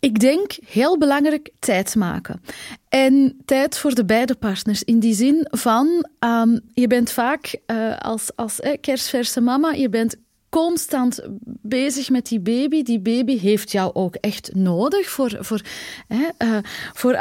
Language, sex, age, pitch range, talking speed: Dutch, female, 30-49, 225-280 Hz, 140 wpm